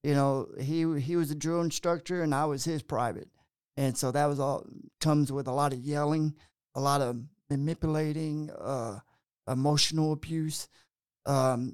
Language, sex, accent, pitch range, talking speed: English, male, American, 135-155 Hz, 165 wpm